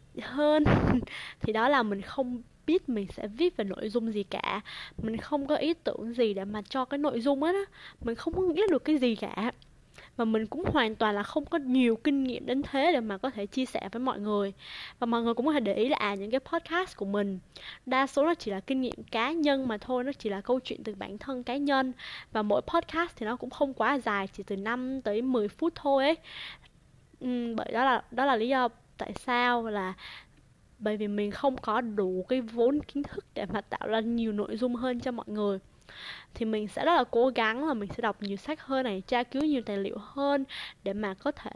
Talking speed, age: 245 wpm, 10-29